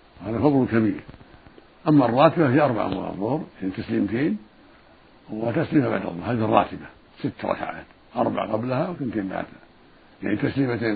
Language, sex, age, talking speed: Arabic, male, 60-79, 135 wpm